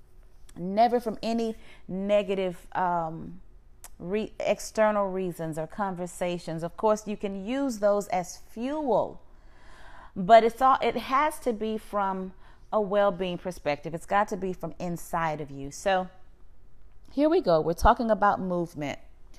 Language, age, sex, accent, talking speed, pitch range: English, 30-49, female, American, 140 wpm, 155-215 Hz